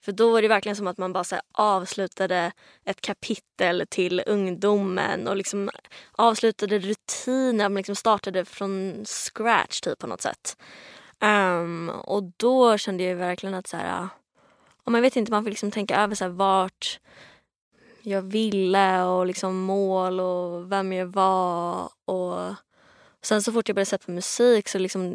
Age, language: 20-39, Swedish